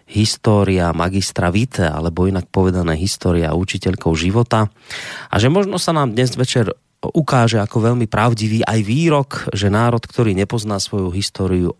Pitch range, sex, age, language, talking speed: 95-120 Hz, male, 30-49, Slovak, 140 wpm